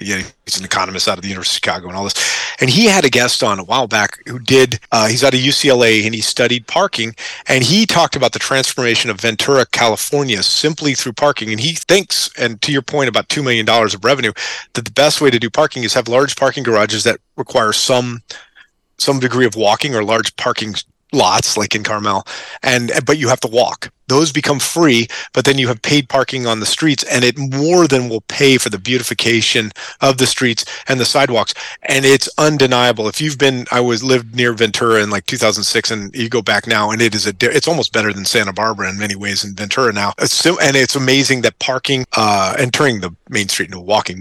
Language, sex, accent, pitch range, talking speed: English, male, American, 110-135 Hz, 225 wpm